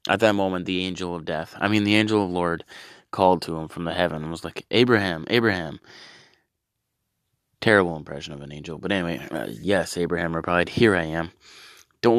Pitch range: 85-105 Hz